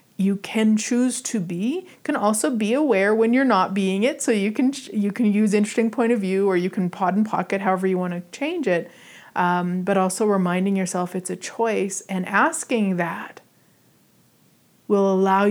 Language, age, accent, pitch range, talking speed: English, 40-59, American, 185-230 Hz, 190 wpm